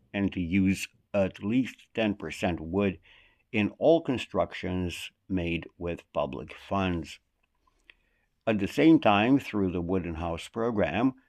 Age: 60-79